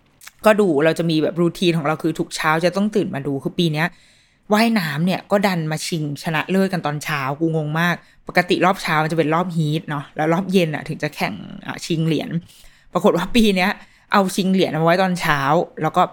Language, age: Thai, 20-39